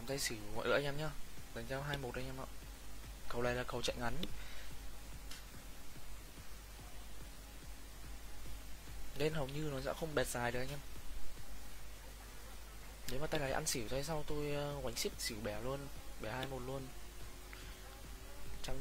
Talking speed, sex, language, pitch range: 160 wpm, male, Vietnamese, 105-140 Hz